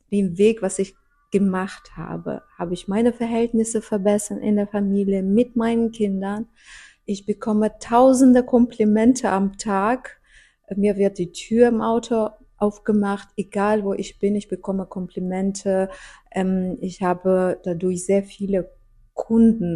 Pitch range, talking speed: 185-220 Hz, 135 wpm